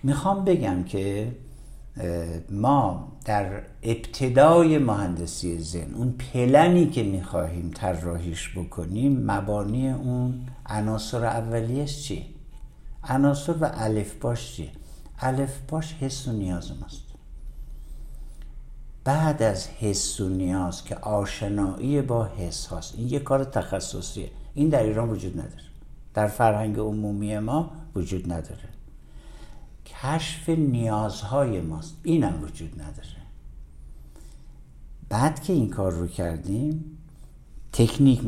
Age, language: 60-79, Persian